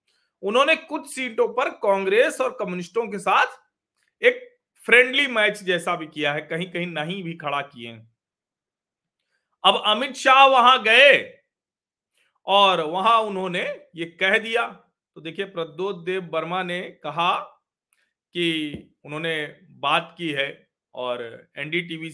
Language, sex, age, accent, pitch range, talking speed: Hindi, male, 40-59, native, 160-235 Hz, 125 wpm